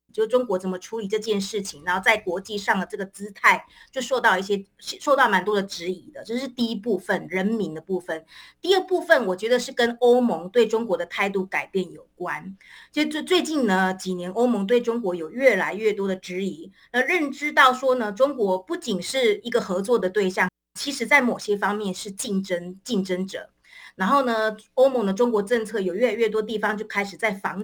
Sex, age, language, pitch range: female, 30-49, Chinese, 190-250 Hz